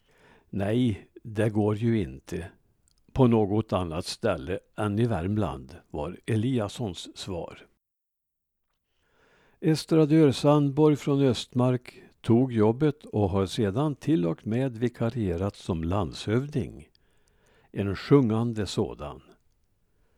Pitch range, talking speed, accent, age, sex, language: 100-130 Hz, 100 wpm, Norwegian, 60-79, male, Swedish